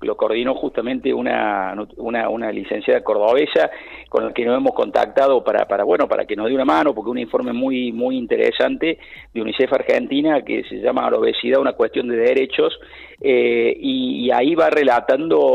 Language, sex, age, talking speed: Spanish, male, 50-69, 180 wpm